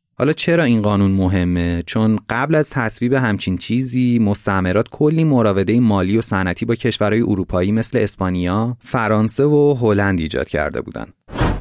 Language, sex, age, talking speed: Persian, male, 30-49, 145 wpm